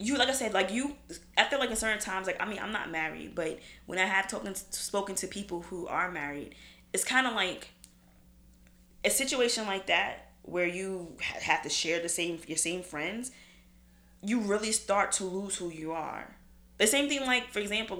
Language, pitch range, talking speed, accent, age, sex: English, 170-210 Hz, 205 wpm, American, 20-39, female